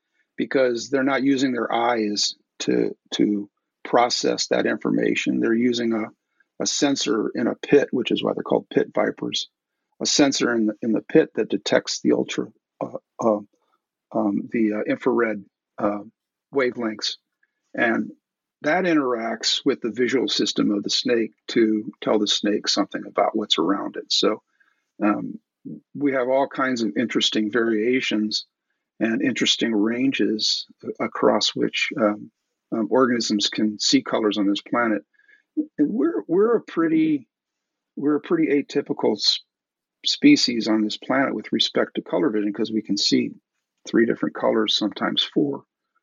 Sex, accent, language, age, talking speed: male, American, English, 50-69, 150 wpm